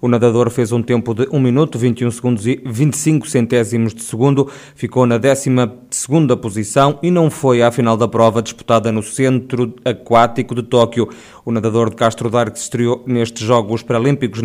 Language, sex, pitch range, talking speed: Portuguese, male, 120-135 Hz, 180 wpm